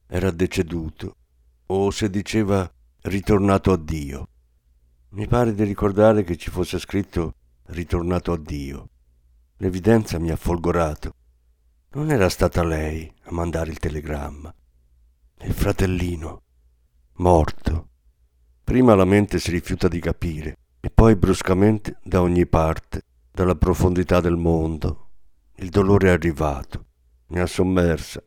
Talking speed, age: 125 wpm, 50-69